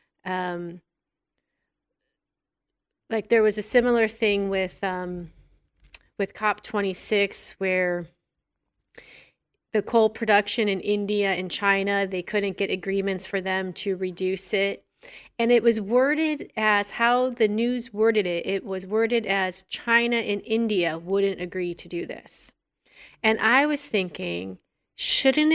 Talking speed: 130 wpm